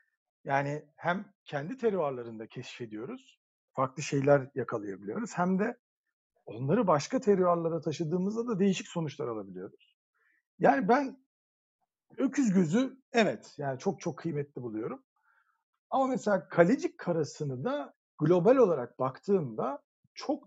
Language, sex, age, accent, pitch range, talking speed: Turkish, male, 50-69, native, 145-220 Hz, 110 wpm